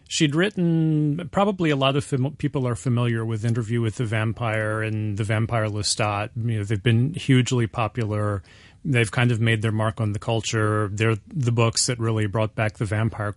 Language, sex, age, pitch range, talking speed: English, male, 30-49, 110-130 Hz, 180 wpm